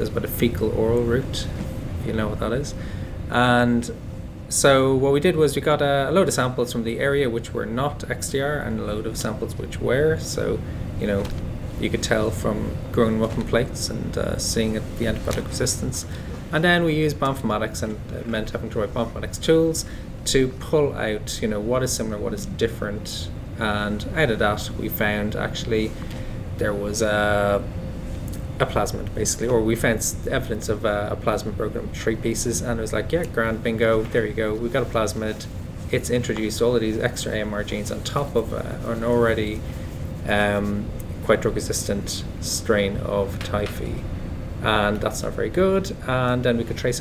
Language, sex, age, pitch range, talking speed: English, male, 20-39, 105-120 Hz, 190 wpm